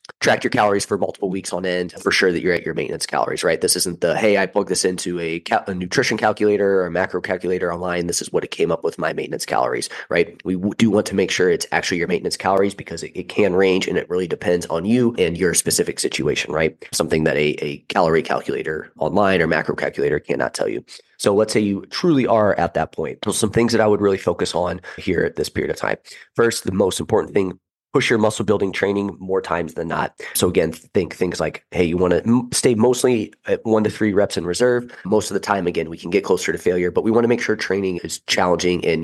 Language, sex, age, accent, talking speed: English, male, 20-39, American, 250 wpm